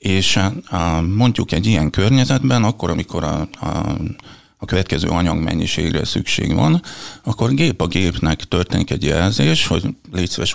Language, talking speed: Hungarian, 125 wpm